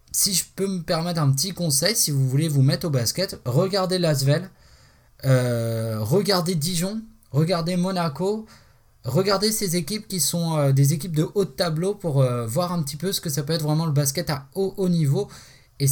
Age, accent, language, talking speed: 20-39, French, French, 205 wpm